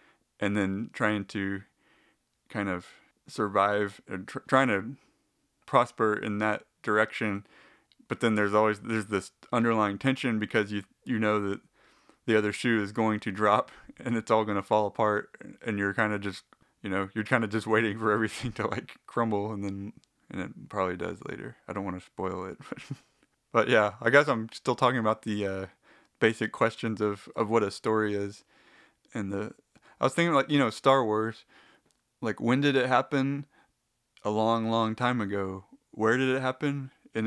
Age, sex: 20-39, male